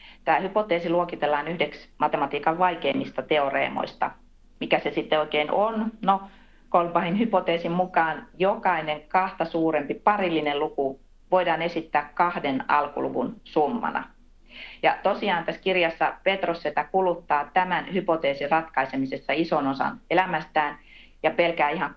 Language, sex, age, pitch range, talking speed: Finnish, female, 40-59, 150-180 Hz, 110 wpm